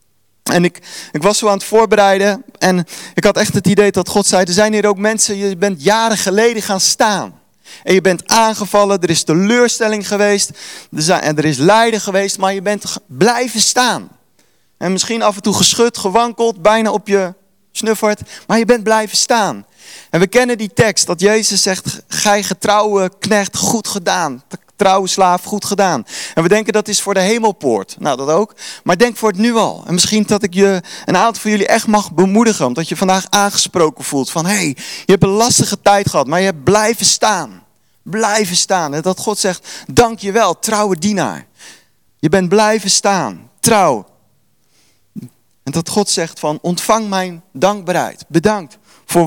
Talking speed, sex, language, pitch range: 190 wpm, male, Dutch, 180-215 Hz